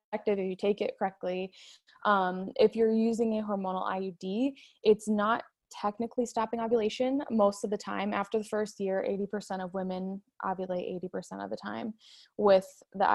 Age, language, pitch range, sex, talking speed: 20-39, English, 190-230 Hz, female, 170 wpm